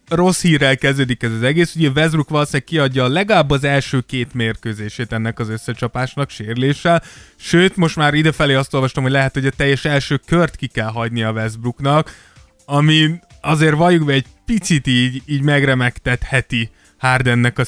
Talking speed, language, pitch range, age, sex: 160 wpm, Hungarian, 120-150 Hz, 20-39, male